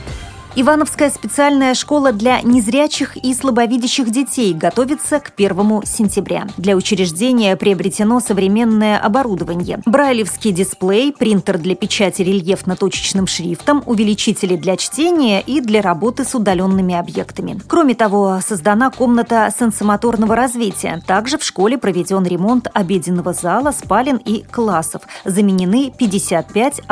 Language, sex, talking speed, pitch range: Russian, female, 115 wpm, 190-250 Hz